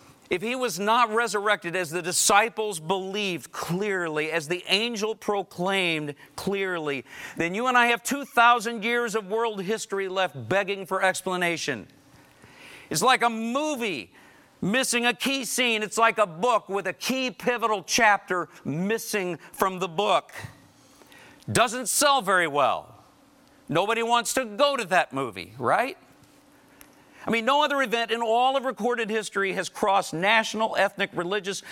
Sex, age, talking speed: male, 50-69, 145 wpm